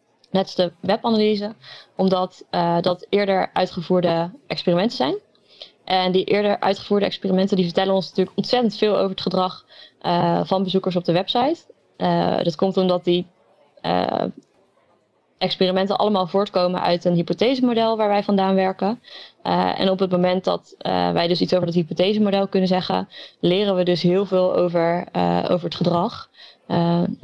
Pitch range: 180-205 Hz